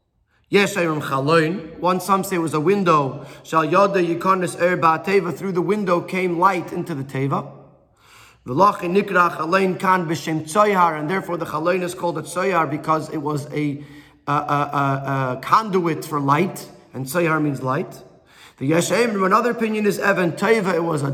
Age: 30-49